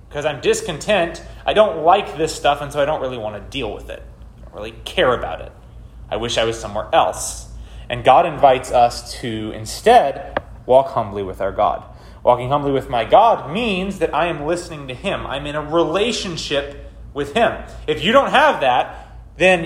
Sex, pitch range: male, 140-195 Hz